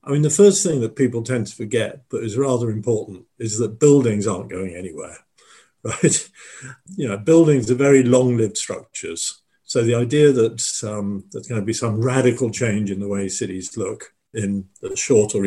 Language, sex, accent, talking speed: English, male, British, 190 wpm